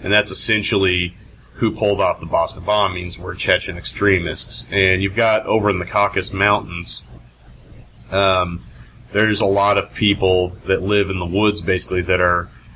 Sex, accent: male, American